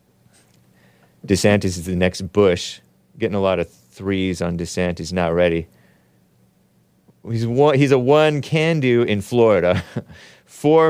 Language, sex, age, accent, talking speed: English, male, 30-49, American, 125 wpm